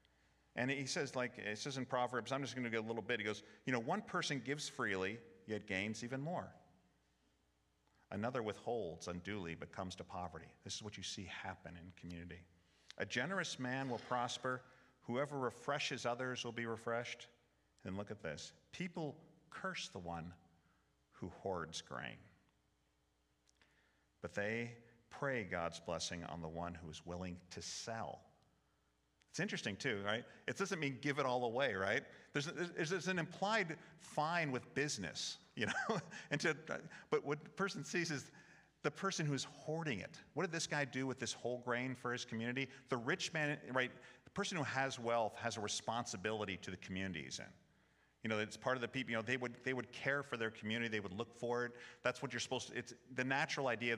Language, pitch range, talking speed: English, 100-135 Hz, 195 wpm